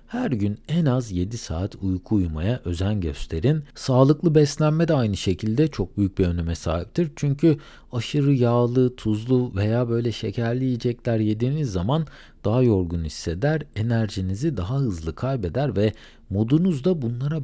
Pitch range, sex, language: 90-135 Hz, male, Turkish